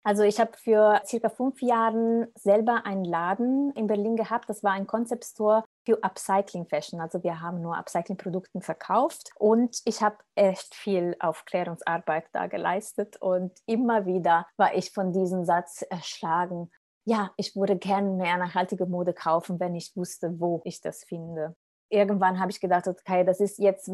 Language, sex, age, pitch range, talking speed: German, female, 20-39, 175-210 Hz, 165 wpm